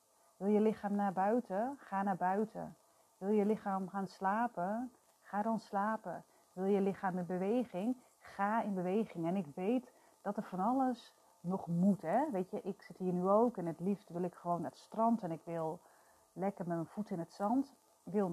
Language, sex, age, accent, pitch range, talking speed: Dutch, female, 30-49, Dutch, 185-220 Hz, 200 wpm